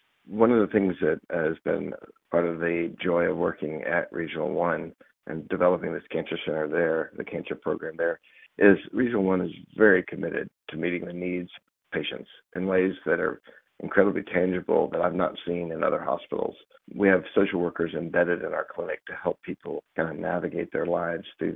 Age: 50-69